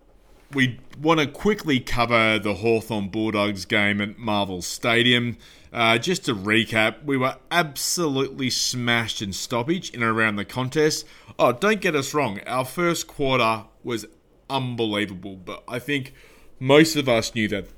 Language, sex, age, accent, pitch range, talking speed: English, male, 30-49, Australian, 105-125 Hz, 150 wpm